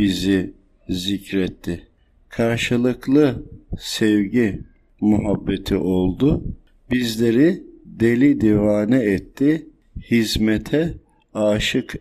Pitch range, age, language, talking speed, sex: 95-115 Hz, 50-69, Turkish, 60 wpm, male